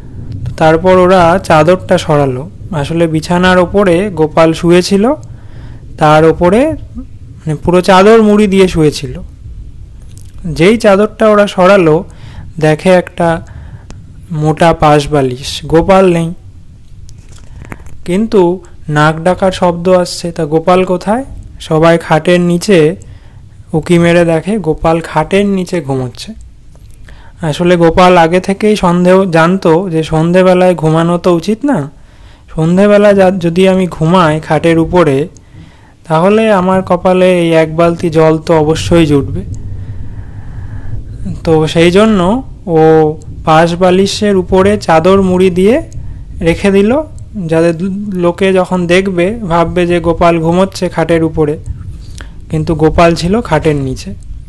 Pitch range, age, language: 150-185 Hz, 30-49, Bengali